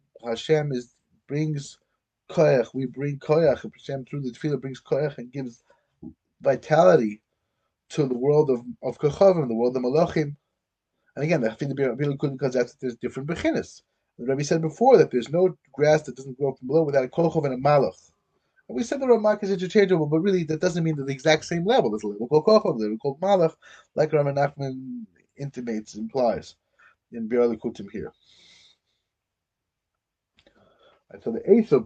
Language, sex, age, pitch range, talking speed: English, male, 20-39, 120-170 Hz, 175 wpm